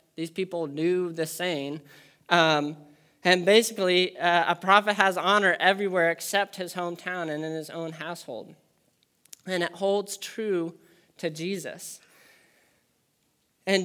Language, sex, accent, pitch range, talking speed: English, male, American, 170-210 Hz, 125 wpm